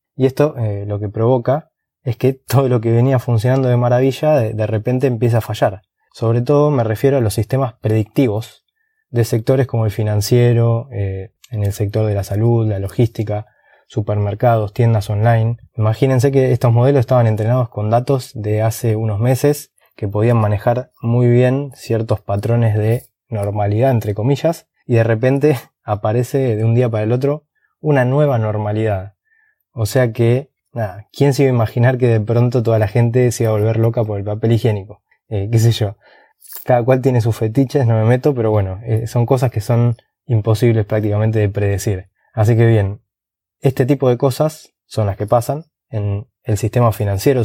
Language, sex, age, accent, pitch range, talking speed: Spanish, male, 20-39, Argentinian, 105-125 Hz, 180 wpm